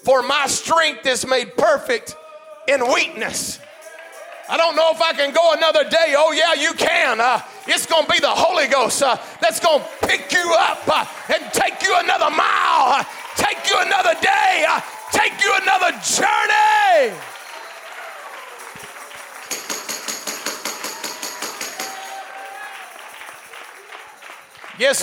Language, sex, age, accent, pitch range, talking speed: English, male, 40-59, American, 275-370 Hz, 125 wpm